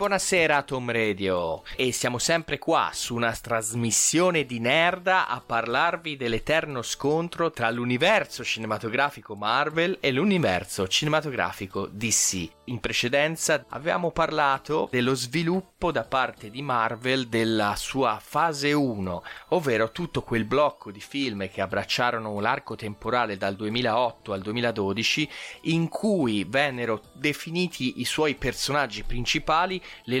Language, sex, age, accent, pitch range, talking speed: Italian, male, 30-49, native, 110-155 Hz, 120 wpm